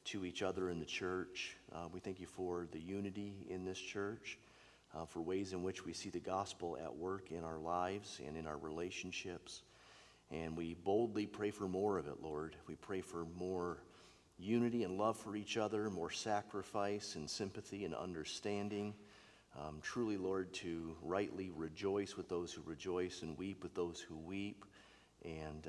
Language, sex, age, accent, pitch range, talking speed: English, male, 40-59, American, 80-100 Hz, 180 wpm